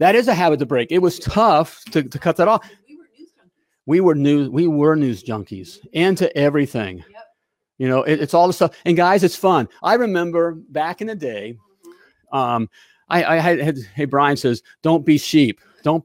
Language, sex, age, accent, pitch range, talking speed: English, male, 40-59, American, 140-185 Hz, 195 wpm